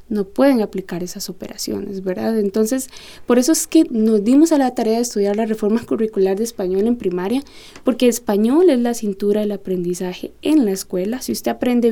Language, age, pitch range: Spanish, 20-39, 200-245 Hz